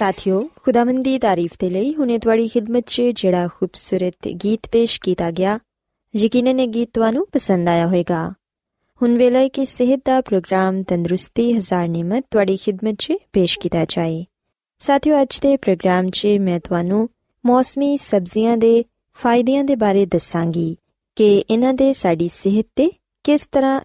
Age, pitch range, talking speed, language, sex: 20-39, 185-260 Hz, 140 wpm, Punjabi, female